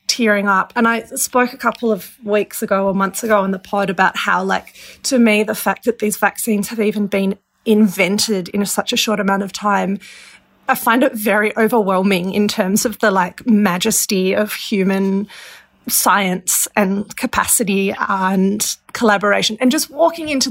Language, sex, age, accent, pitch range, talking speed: English, female, 30-49, Australian, 200-245 Hz, 175 wpm